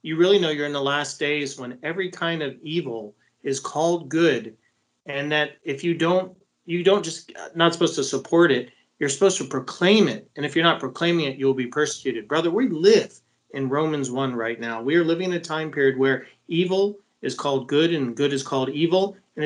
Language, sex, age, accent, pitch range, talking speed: English, male, 40-59, American, 135-175 Hz, 215 wpm